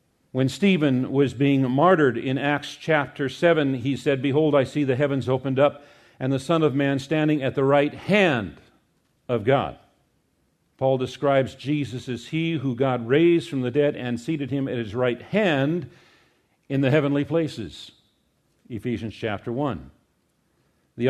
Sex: male